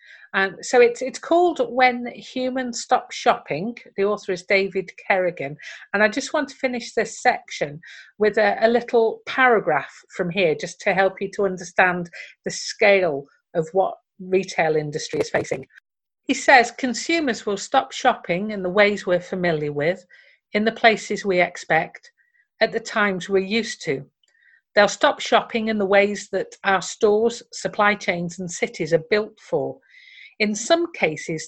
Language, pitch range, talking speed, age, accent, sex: English, 175-240 Hz, 160 wpm, 40-59, British, female